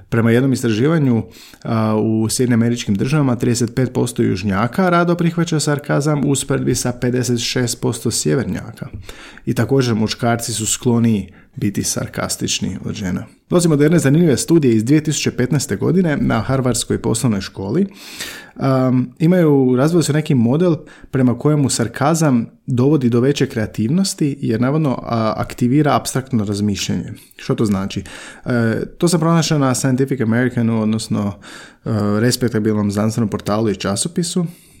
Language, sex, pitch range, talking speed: Croatian, male, 110-140 Hz, 120 wpm